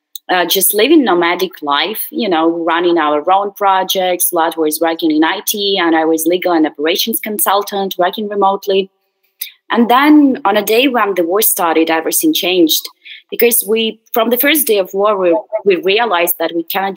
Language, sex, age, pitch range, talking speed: English, female, 20-39, 175-225 Hz, 180 wpm